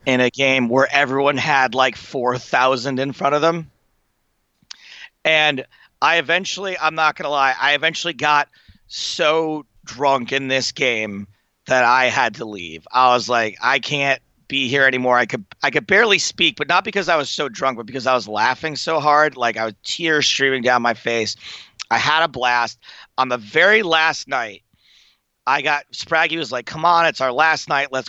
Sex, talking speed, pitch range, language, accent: male, 190 wpm, 115-145 Hz, English, American